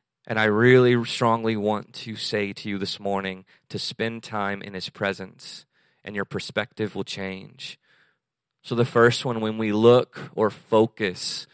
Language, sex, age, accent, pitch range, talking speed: English, male, 30-49, American, 105-125 Hz, 160 wpm